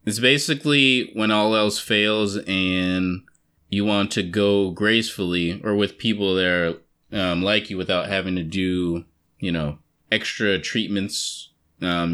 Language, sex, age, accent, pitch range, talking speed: English, male, 20-39, American, 95-120 Hz, 145 wpm